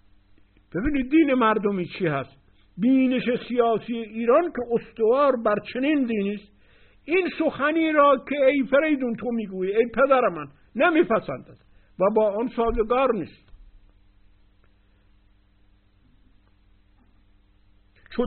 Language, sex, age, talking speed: Persian, male, 60-79, 105 wpm